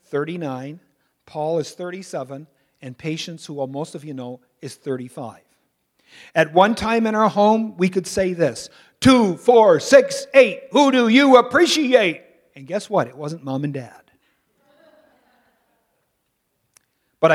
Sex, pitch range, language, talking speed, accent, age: male, 125-175 Hz, English, 140 wpm, American, 50-69